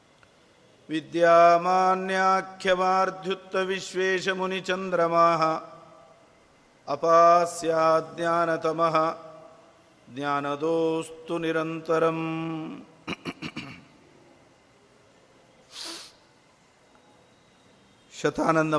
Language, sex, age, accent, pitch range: Kannada, male, 50-69, native, 155-185 Hz